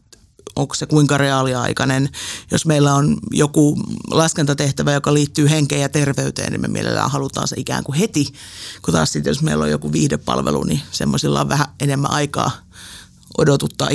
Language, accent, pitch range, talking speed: Finnish, native, 130-155 Hz, 155 wpm